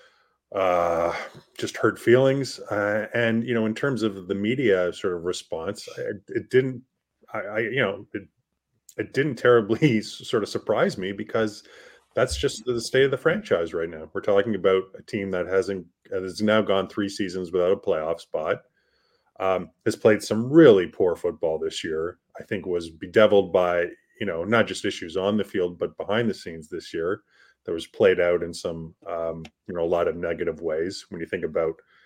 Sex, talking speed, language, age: male, 195 wpm, English, 30-49